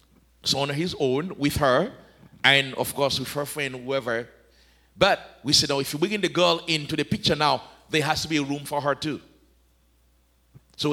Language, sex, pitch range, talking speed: English, male, 135-165 Hz, 205 wpm